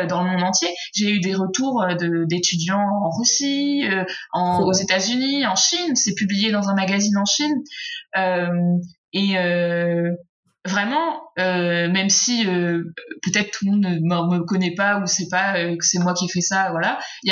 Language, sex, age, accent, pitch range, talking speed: French, female, 20-39, French, 180-225 Hz, 200 wpm